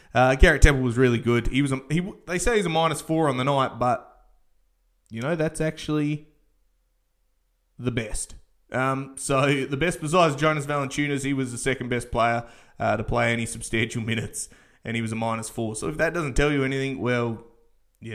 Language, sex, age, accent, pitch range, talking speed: English, male, 20-39, Australian, 120-165 Hz, 200 wpm